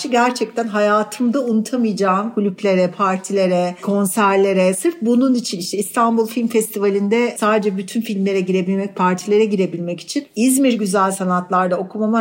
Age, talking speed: 60-79, 120 wpm